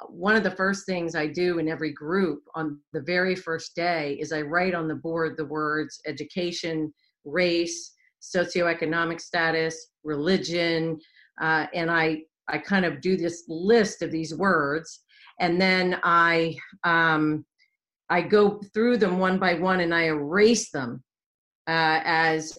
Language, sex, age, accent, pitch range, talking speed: English, female, 50-69, American, 160-180 Hz, 150 wpm